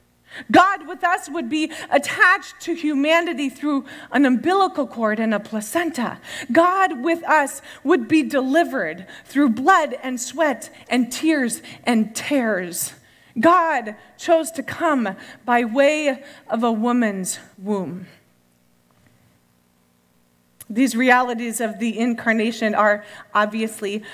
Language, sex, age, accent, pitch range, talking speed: English, female, 30-49, American, 220-310 Hz, 115 wpm